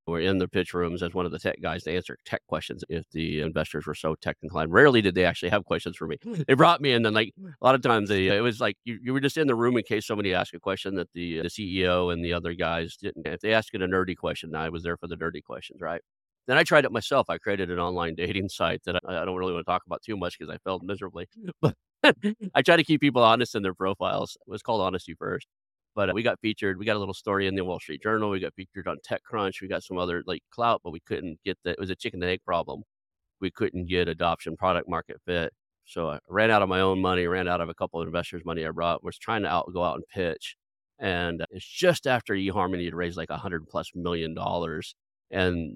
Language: English